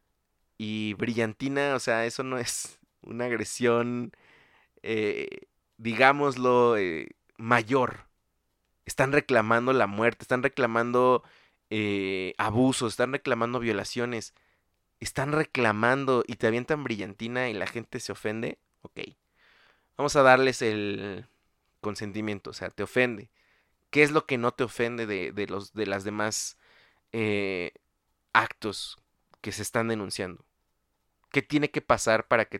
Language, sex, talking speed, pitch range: Spanish, male, 130 wpm, 105-125 Hz